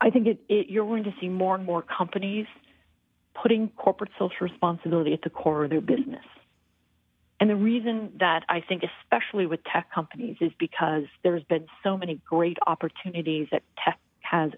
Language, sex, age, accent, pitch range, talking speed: English, female, 40-59, American, 165-210 Hz, 175 wpm